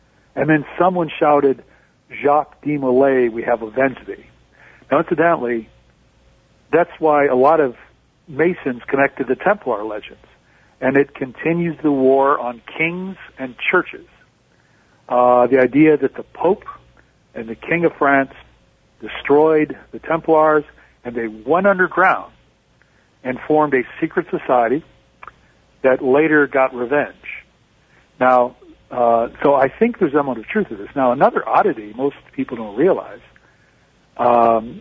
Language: English